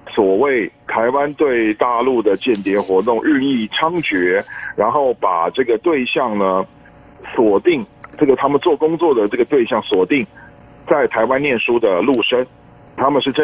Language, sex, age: Chinese, male, 50-69